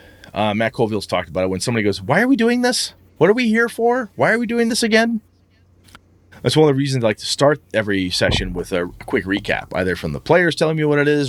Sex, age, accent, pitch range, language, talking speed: male, 30-49, American, 95-140 Hz, English, 260 wpm